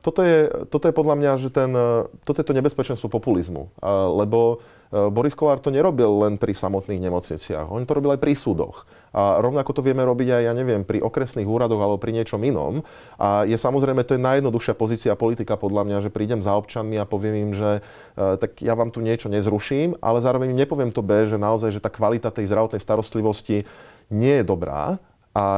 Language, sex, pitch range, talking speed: Slovak, male, 105-120 Hz, 200 wpm